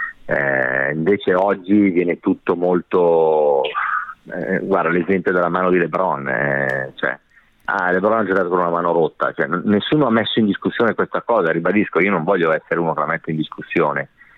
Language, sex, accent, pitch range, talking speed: Italian, male, native, 80-95 Hz, 180 wpm